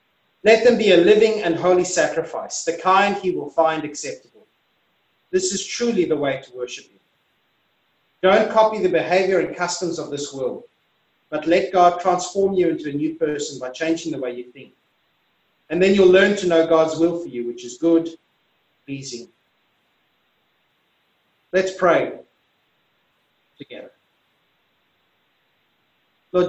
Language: English